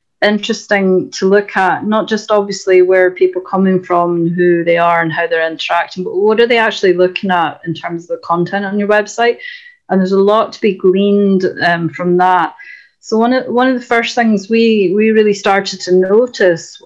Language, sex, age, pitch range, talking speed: English, female, 30-49, 180-215 Hz, 210 wpm